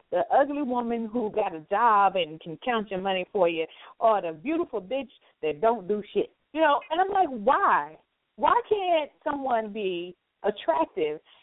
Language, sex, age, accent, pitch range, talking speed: English, female, 30-49, American, 220-295 Hz, 175 wpm